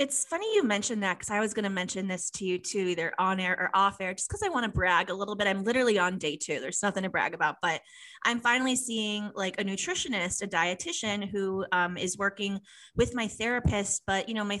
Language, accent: English, American